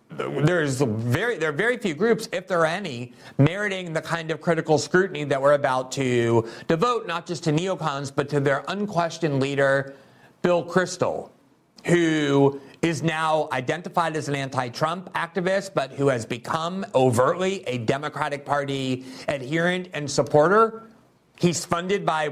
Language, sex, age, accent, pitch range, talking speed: English, male, 40-59, American, 135-170 Hz, 150 wpm